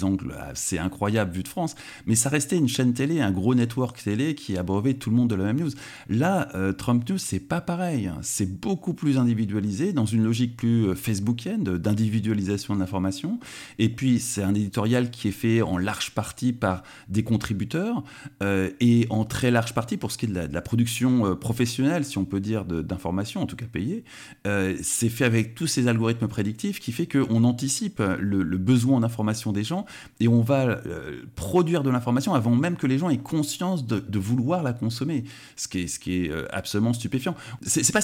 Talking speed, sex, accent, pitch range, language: 210 wpm, male, French, 100-135 Hz, French